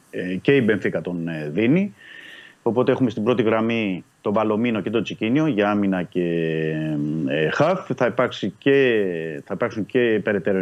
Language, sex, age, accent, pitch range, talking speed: Greek, male, 30-49, native, 95-125 Hz, 160 wpm